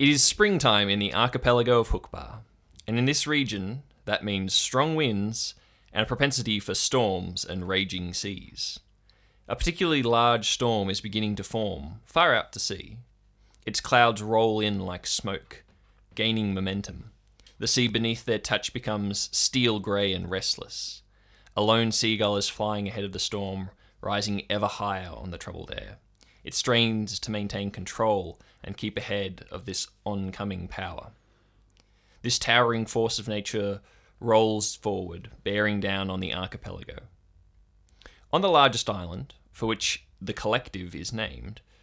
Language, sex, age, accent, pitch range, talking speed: English, male, 20-39, Australian, 95-115 Hz, 150 wpm